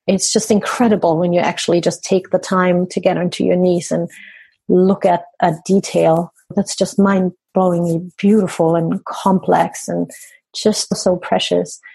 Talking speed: 150 wpm